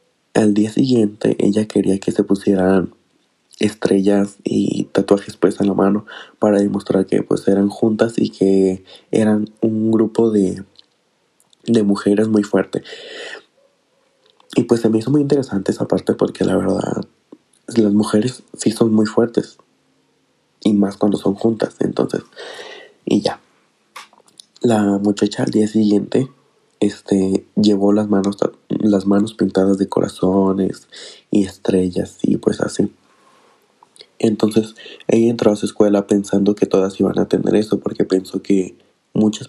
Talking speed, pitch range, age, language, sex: 140 wpm, 95-115 Hz, 20-39, Spanish, male